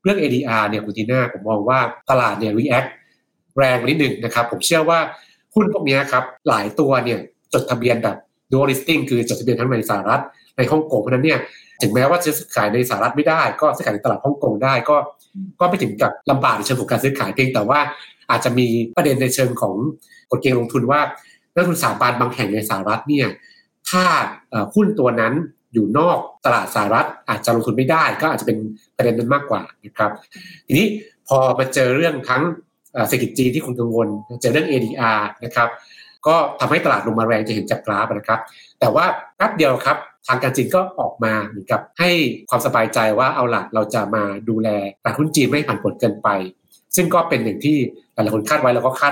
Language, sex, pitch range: Thai, male, 115-150 Hz